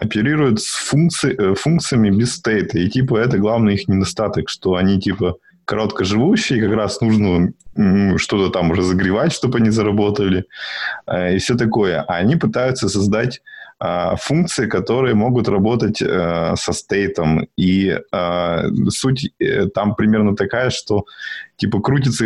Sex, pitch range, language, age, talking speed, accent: male, 95-120 Hz, Russian, 20-39, 135 wpm, native